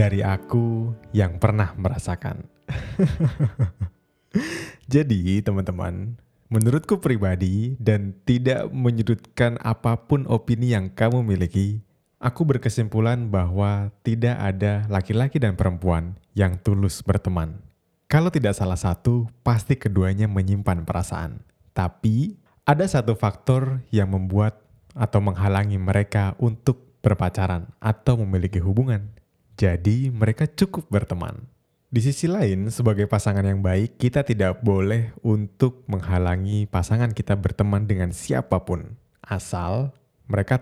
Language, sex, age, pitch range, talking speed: Indonesian, male, 20-39, 95-120 Hz, 110 wpm